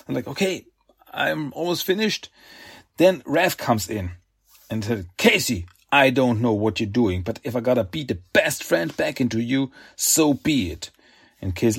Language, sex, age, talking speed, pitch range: German, male, 40-59, 180 wpm, 105-135 Hz